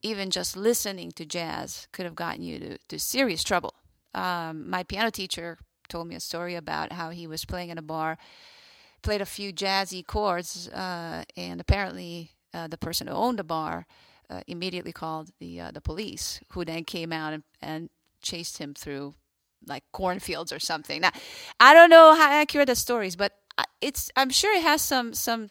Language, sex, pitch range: English, female, 165-240 Hz